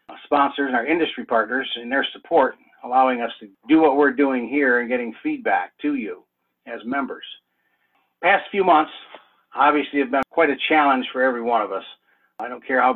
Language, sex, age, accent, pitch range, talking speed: English, male, 60-79, American, 125-150 Hz, 190 wpm